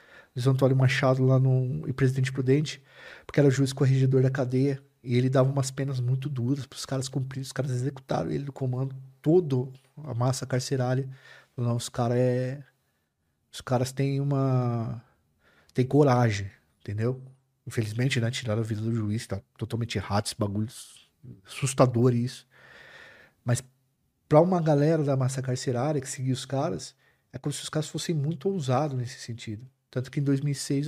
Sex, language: male, Portuguese